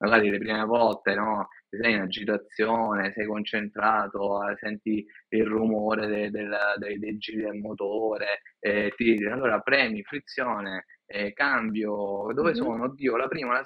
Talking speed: 140 wpm